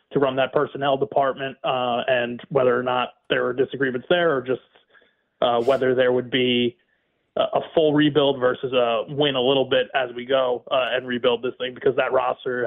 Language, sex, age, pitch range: English, male, 20-39, 125-140 Hz